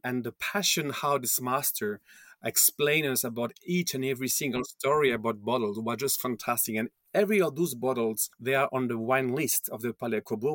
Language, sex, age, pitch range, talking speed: English, male, 40-59, 120-140 Hz, 195 wpm